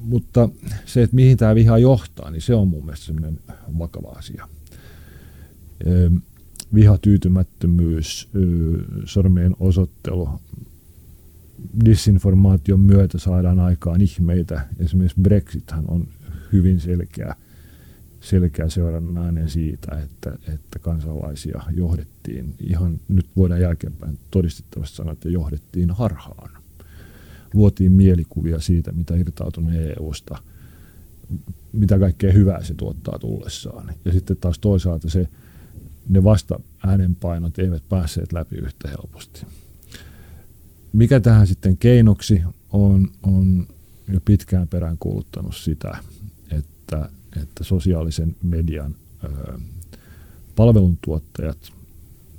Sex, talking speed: male, 95 wpm